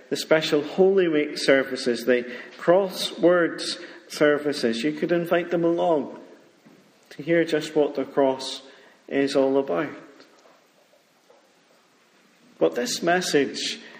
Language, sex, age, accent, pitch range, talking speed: English, male, 40-59, British, 120-150 Hz, 110 wpm